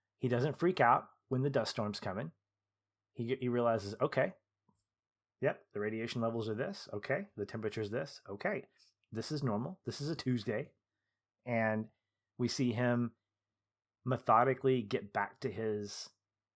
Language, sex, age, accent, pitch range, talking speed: English, male, 30-49, American, 105-135 Hz, 145 wpm